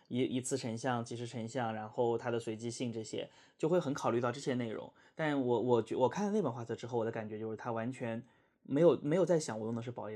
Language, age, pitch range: Chinese, 20-39, 115-135 Hz